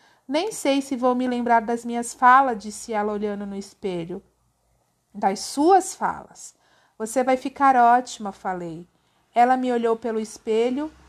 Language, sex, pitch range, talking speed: Portuguese, female, 215-265 Hz, 145 wpm